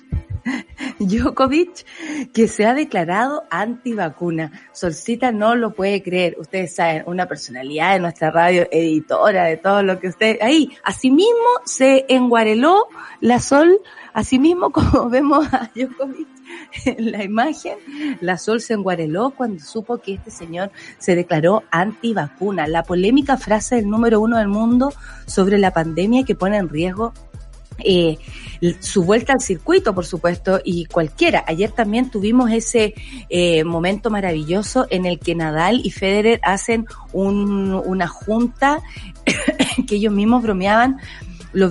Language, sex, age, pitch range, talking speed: Spanish, female, 30-49, 185-255 Hz, 140 wpm